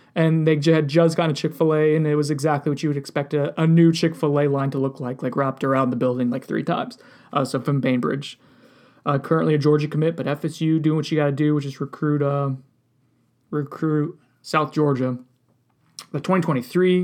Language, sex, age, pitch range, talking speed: English, male, 20-39, 150-180 Hz, 200 wpm